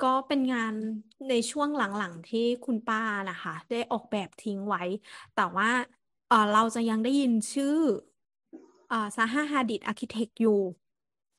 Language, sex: Thai, female